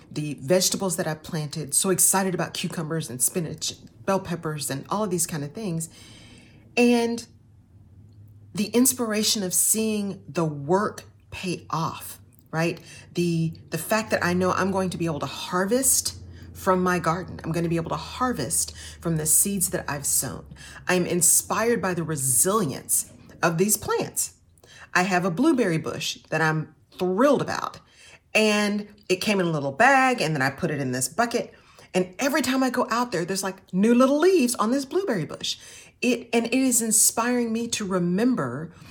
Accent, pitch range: American, 140-210 Hz